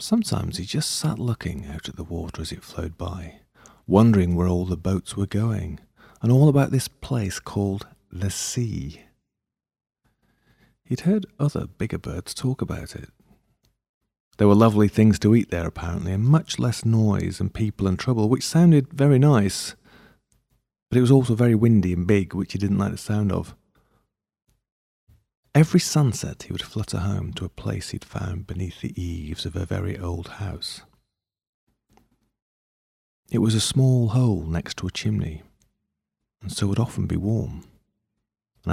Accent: British